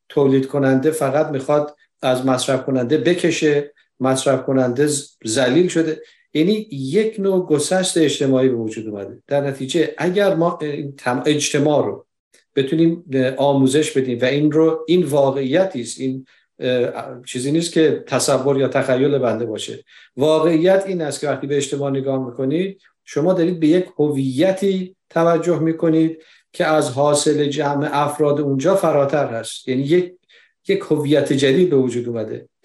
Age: 50-69